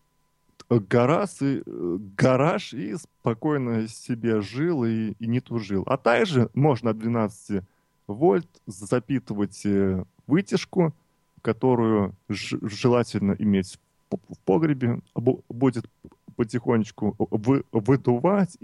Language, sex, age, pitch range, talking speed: Russian, male, 20-39, 105-135 Hz, 75 wpm